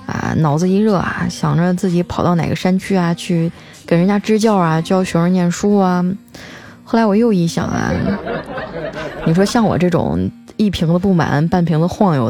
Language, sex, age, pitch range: Chinese, female, 20-39, 175-225 Hz